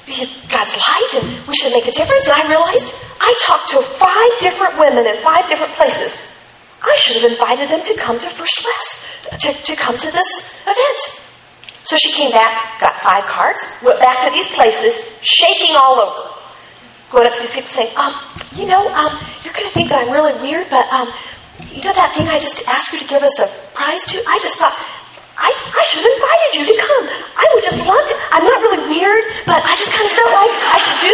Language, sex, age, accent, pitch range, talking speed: English, female, 40-59, American, 260-405 Hz, 225 wpm